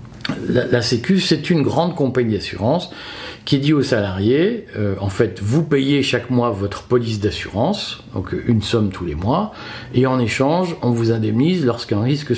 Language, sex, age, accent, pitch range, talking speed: French, male, 50-69, French, 115-150 Hz, 175 wpm